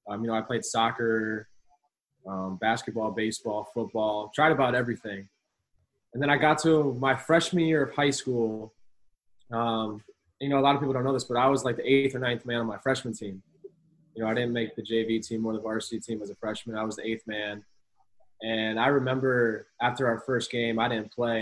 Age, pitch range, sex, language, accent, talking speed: 20-39, 110-125 Hz, male, English, American, 215 wpm